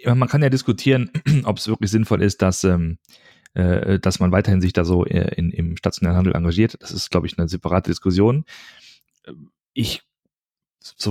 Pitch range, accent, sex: 90-110 Hz, German, male